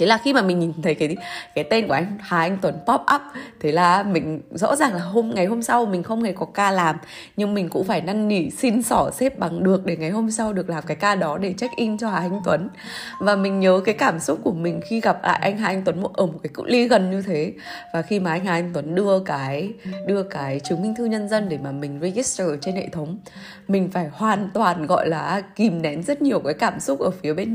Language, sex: Vietnamese, female